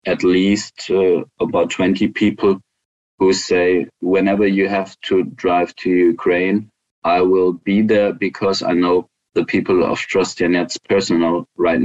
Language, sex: Ukrainian, male